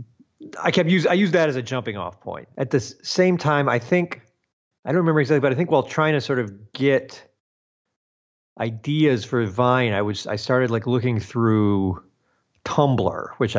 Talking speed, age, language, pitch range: 185 wpm, 40-59, English, 110-140 Hz